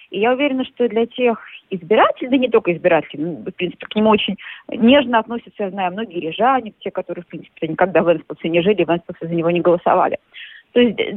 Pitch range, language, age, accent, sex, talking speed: 185-255 Hz, Russian, 30-49, native, female, 215 wpm